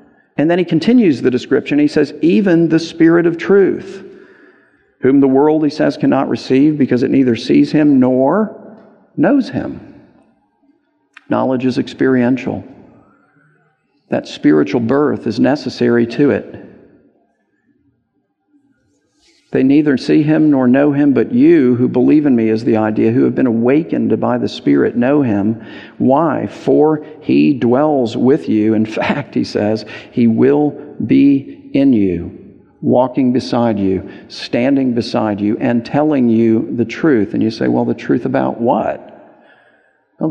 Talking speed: 145 wpm